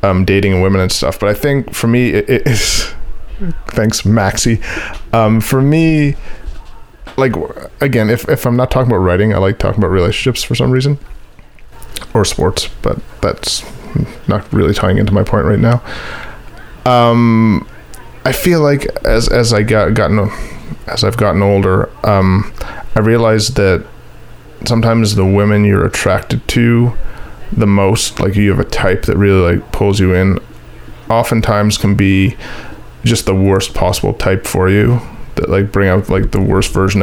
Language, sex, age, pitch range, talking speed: English, male, 30-49, 95-115 Hz, 165 wpm